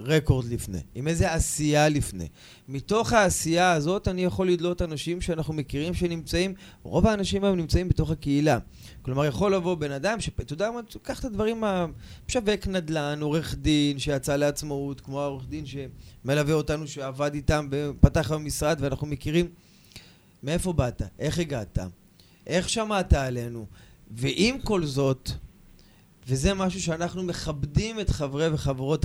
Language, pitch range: Hebrew, 130-180 Hz